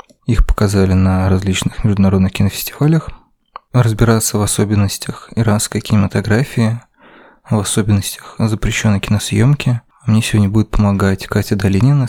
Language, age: Russian, 20-39